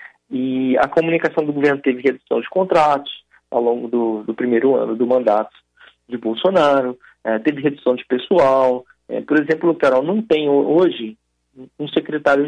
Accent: Brazilian